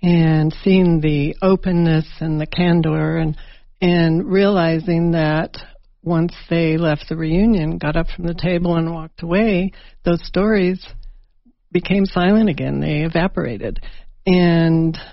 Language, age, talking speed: English, 60-79, 125 wpm